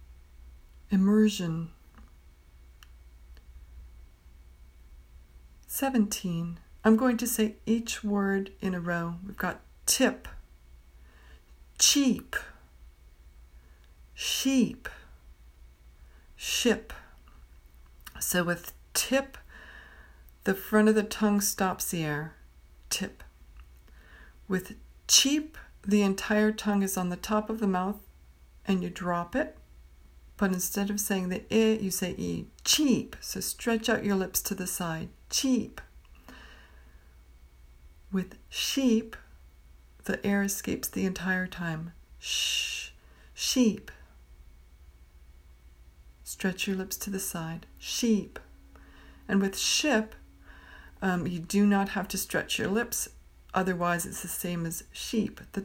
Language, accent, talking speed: English, American, 110 wpm